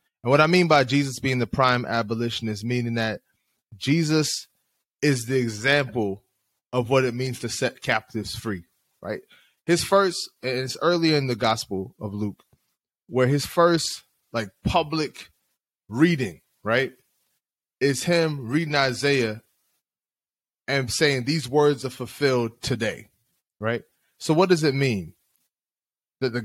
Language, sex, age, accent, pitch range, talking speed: English, male, 20-39, American, 120-155 Hz, 140 wpm